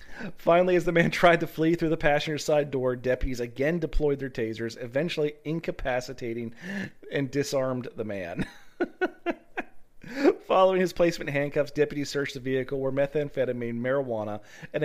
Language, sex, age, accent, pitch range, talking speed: English, male, 40-59, American, 120-170 Hz, 140 wpm